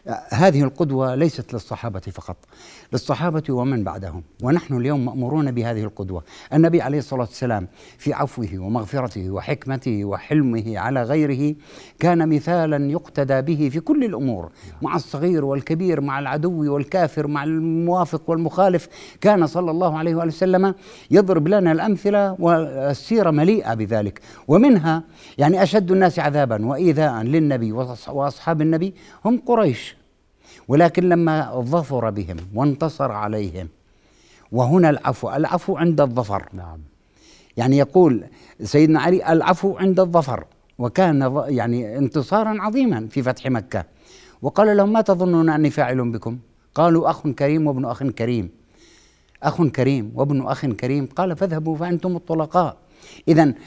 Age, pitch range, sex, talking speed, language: 60-79, 125-170 Hz, male, 125 wpm, Arabic